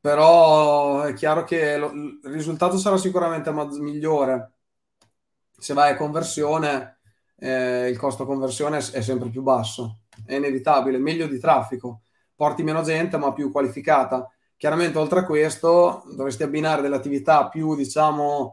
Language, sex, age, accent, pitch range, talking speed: Italian, male, 20-39, native, 140-155 Hz, 145 wpm